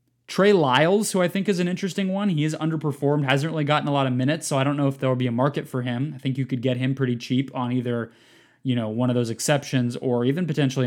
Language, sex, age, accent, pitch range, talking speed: English, male, 20-39, American, 130-160 Hz, 275 wpm